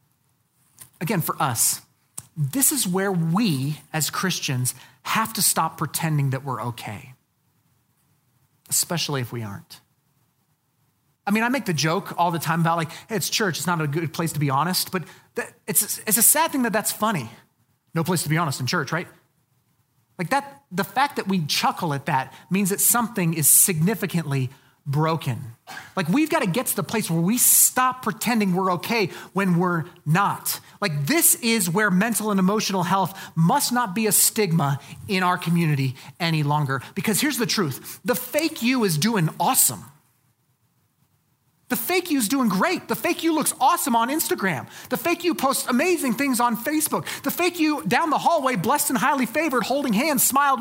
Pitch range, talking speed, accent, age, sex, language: 145-235 Hz, 180 wpm, American, 30-49, male, English